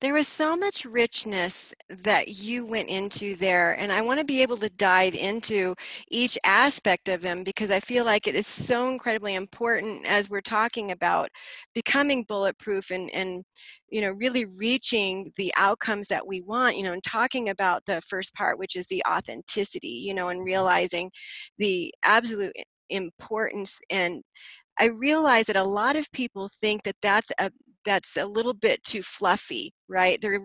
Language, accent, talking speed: English, American, 175 wpm